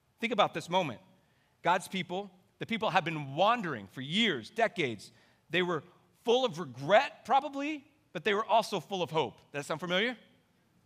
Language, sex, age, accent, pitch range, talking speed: English, male, 40-59, American, 145-205 Hz, 170 wpm